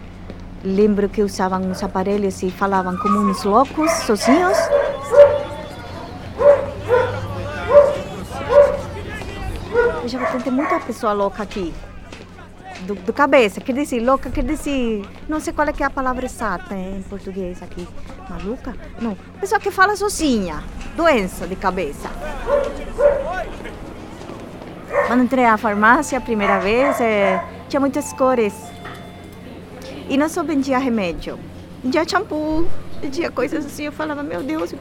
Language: Portuguese